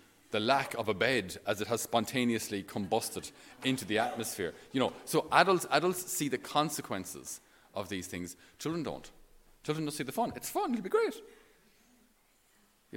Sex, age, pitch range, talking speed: male, 30-49, 110-155 Hz, 170 wpm